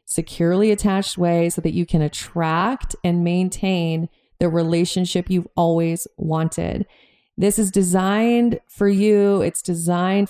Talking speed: 130 wpm